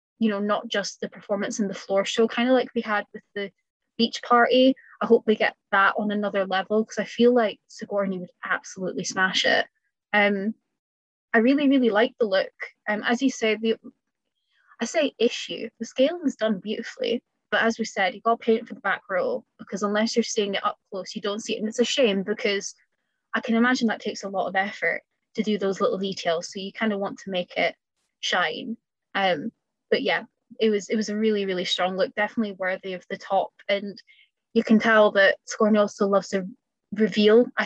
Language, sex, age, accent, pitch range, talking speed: English, female, 20-39, British, 200-230 Hz, 215 wpm